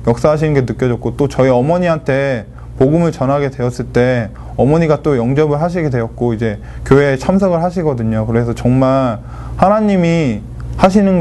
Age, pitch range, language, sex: 20-39, 120-150 Hz, Korean, male